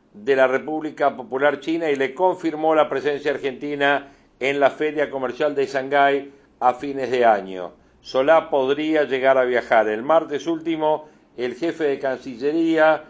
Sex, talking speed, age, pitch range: male, 150 wpm, 50-69, 130-155 Hz